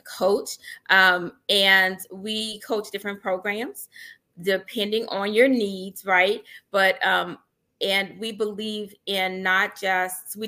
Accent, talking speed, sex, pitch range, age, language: American, 120 wpm, female, 185-220 Hz, 20-39, English